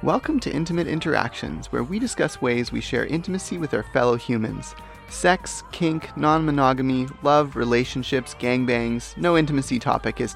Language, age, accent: English, 20-39, American